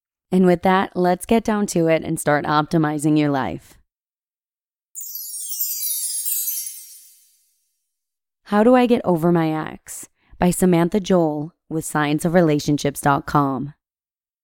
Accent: American